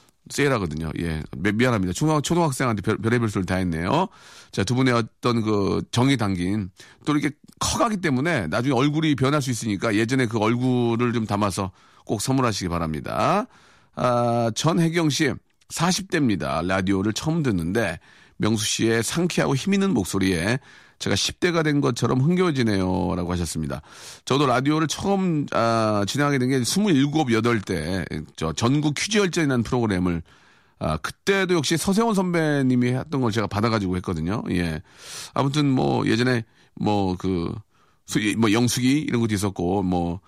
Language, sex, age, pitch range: Korean, male, 40-59, 100-145 Hz